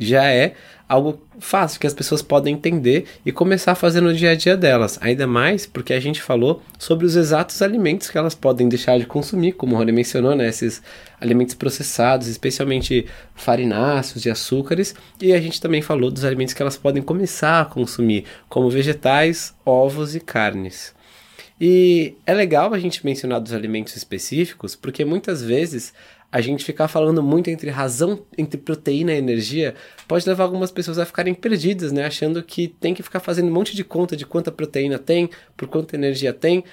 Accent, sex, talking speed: Brazilian, male, 185 wpm